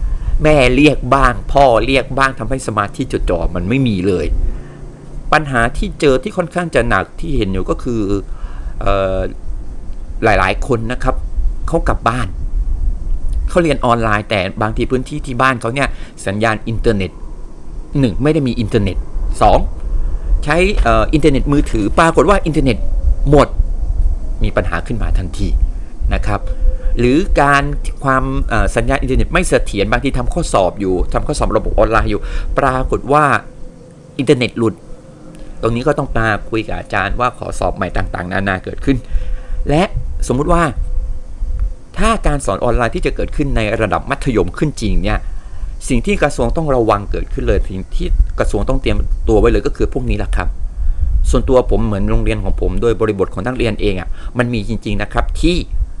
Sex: male